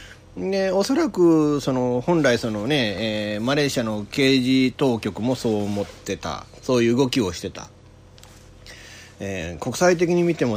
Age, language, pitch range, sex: 40-59, Japanese, 100-135 Hz, male